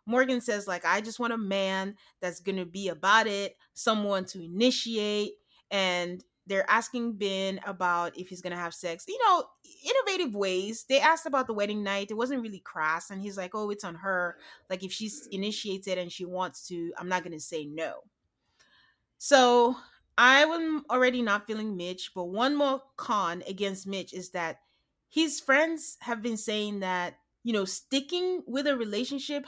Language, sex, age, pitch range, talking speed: English, female, 30-49, 185-265 Hz, 185 wpm